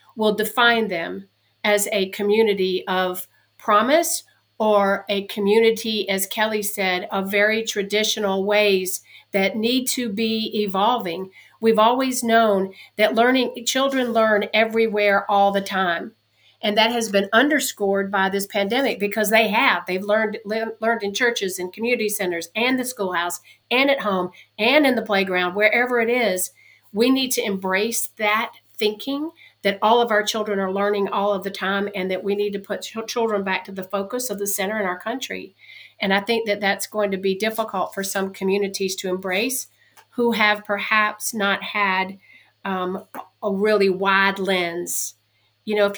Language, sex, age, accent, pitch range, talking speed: English, female, 50-69, American, 195-220 Hz, 165 wpm